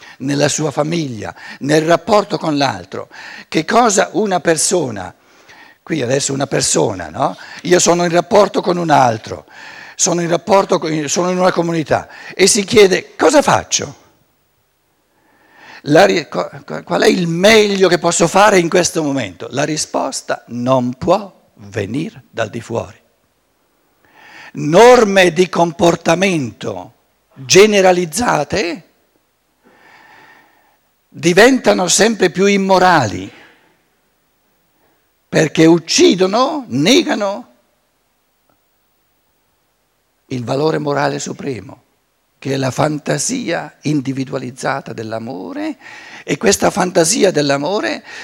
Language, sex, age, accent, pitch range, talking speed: Italian, male, 60-79, native, 145-205 Hz, 100 wpm